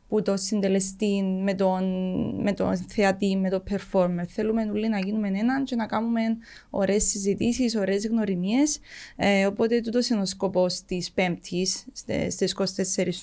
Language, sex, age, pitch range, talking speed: Greek, female, 20-39, 200-250 Hz, 130 wpm